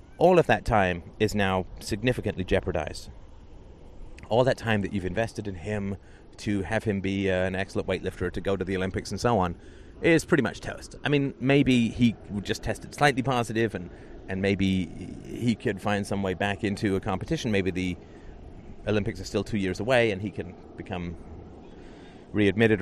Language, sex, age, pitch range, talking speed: English, male, 30-49, 95-115 Hz, 185 wpm